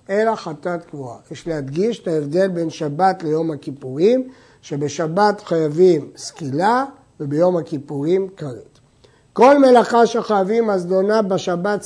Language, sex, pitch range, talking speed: Hebrew, male, 175-230 Hz, 110 wpm